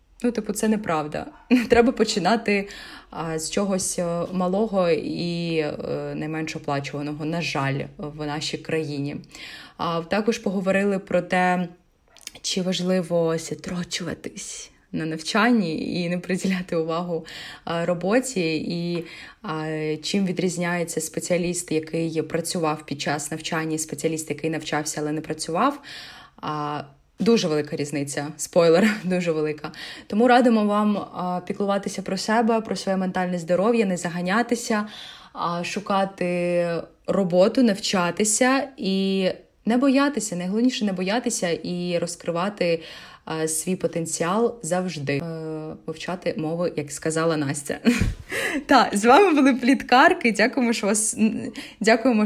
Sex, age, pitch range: female, 20-39, 160-215 Hz